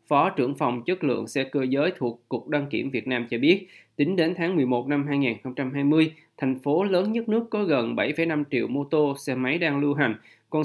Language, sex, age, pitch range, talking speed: Vietnamese, male, 20-39, 130-165 Hz, 220 wpm